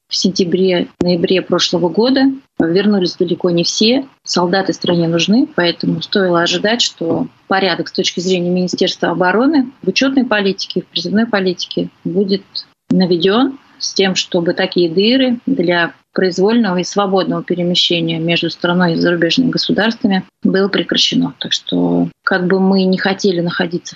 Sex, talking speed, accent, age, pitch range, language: female, 140 wpm, native, 30-49, 175-210 Hz, Russian